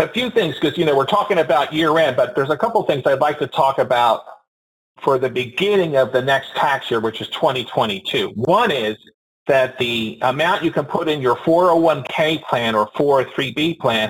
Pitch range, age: 120-165 Hz, 50-69